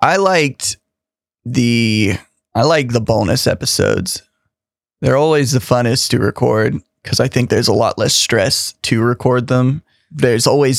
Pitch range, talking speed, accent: 105-130 Hz, 150 wpm, American